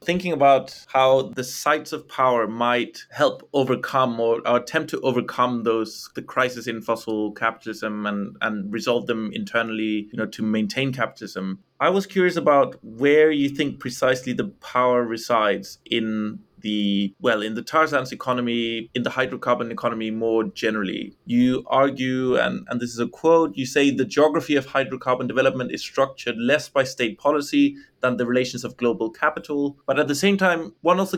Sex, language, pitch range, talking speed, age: male, English, 120-145 Hz, 170 wpm, 20-39